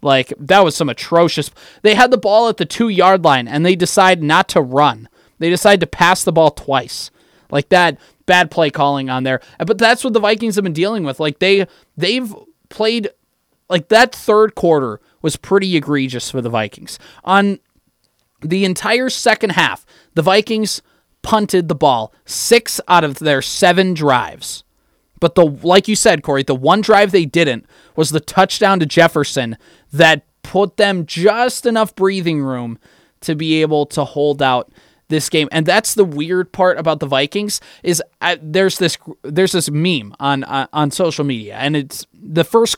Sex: male